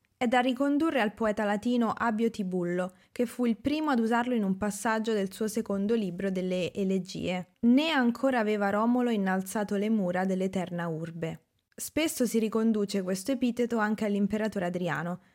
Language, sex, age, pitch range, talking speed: Italian, female, 20-39, 190-235 Hz, 155 wpm